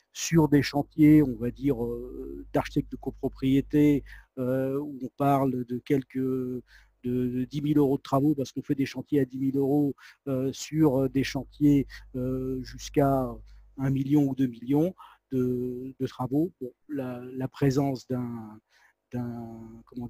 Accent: French